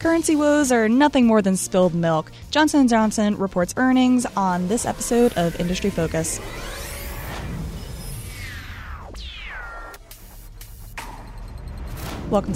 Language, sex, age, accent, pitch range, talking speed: English, female, 20-39, American, 175-230 Hz, 90 wpm